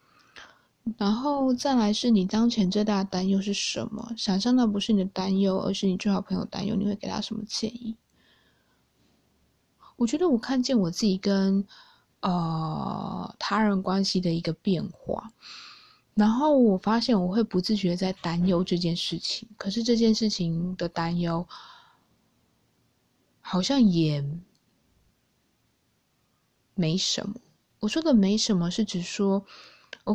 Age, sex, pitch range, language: 20-39, female, 185-225 Hz, Chinese